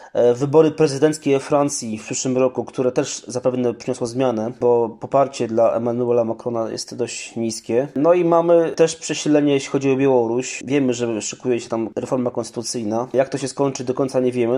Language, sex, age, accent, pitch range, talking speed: Polish, male, 20-39, native, 120-145 Hz, 175 wpm